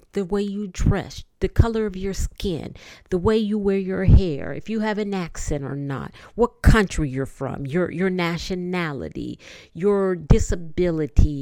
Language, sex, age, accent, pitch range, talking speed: English, female, 50-69, American, 130-190 Hz, 165 wpm